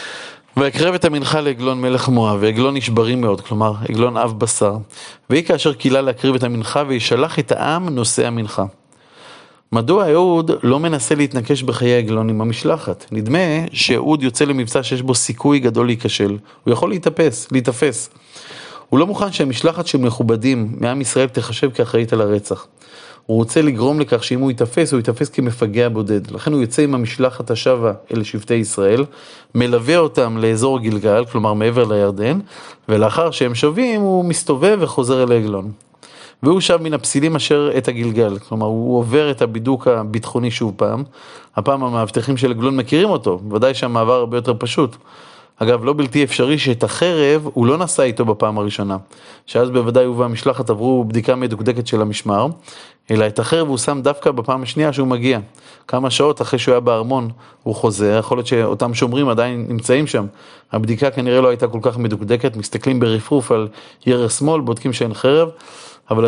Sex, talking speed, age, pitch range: male, 165 wpm, 30-49, 115-140 Hz